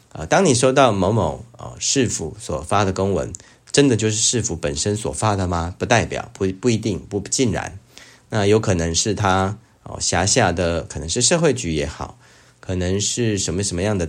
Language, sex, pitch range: Chinese, male, 90-115 Hz